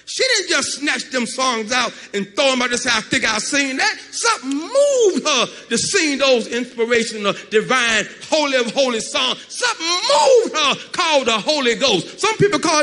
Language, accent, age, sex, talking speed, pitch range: English, American, 40-59, male, 185 wpm, 250-380 Hz